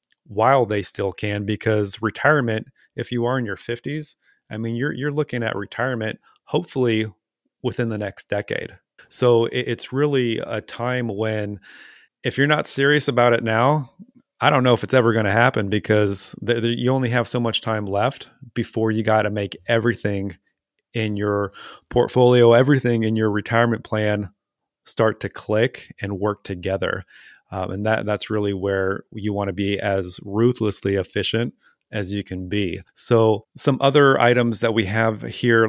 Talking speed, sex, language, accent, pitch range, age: 170 wpm, male, English, American, 105-125 Hz, 30-49